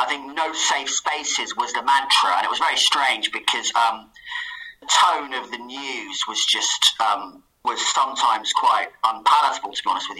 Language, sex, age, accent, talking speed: English, male, 30-49, British, 180 wpm